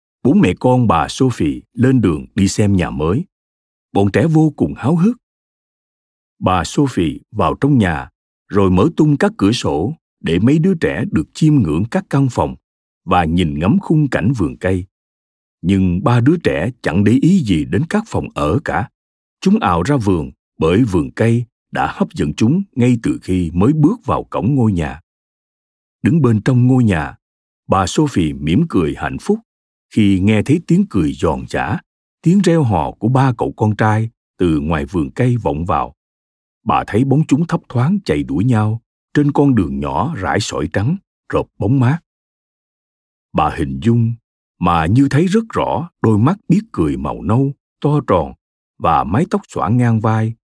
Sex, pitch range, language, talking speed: male, 90-145 Hz, Vietnamese, 180 wpm